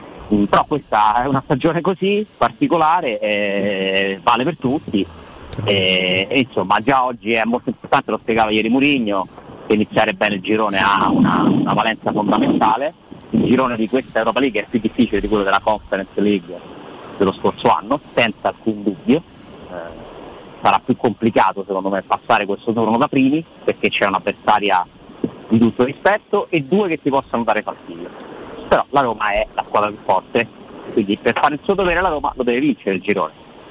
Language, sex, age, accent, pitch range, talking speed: Italian, male, 30-49, native, 105-140 Hz, 175 wpm